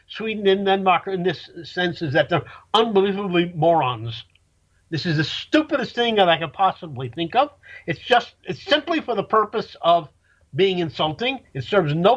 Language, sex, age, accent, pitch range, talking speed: English, male, 50-69, American, 150-225 Hz, 175 wpm